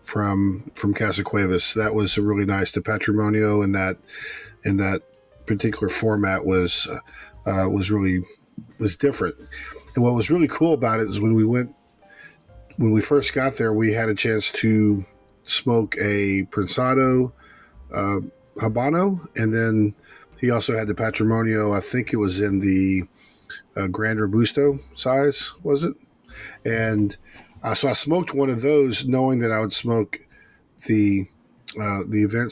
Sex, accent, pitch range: male, American, 100-115 Hz